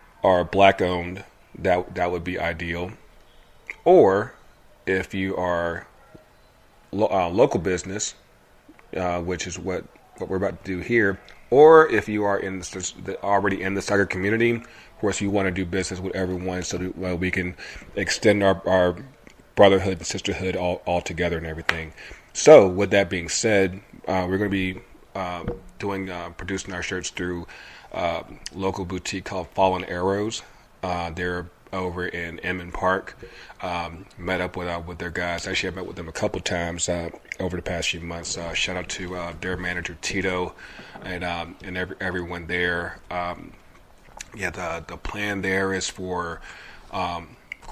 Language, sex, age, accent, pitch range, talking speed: English, male, 30-49, American, 90-95 Hz, 170 wpm